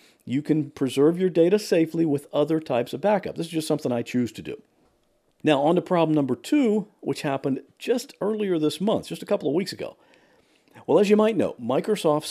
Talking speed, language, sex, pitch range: 210 wpm, English, male, 120-175 Hz